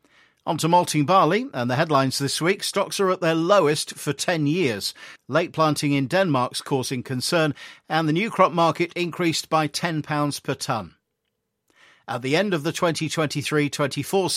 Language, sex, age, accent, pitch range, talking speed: English, male, 50-69, British, 135-160 Hz, 165 wpm